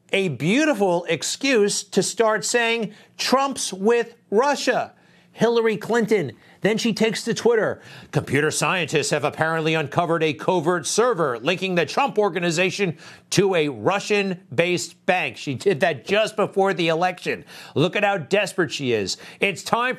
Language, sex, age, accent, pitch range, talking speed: English, male, 50-69, American, 155-205 Hz, 140 wpm